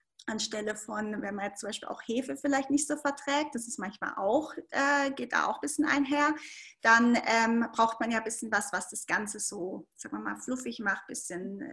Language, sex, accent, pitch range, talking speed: German, female, German, 205-255 Hz, 220 wpm